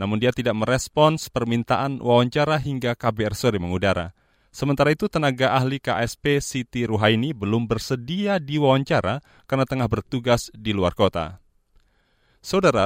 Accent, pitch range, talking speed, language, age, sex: native, 105-140 Hz, 125 wpm, Indonesian, 30-49, male